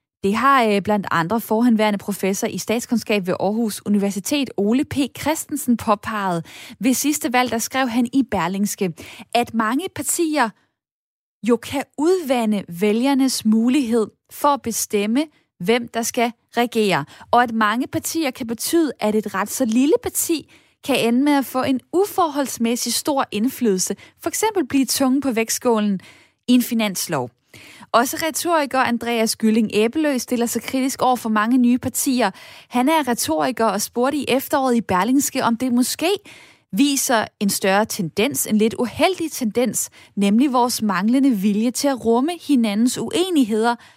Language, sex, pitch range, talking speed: Danish, female, 215-270 Hz, 150 wpm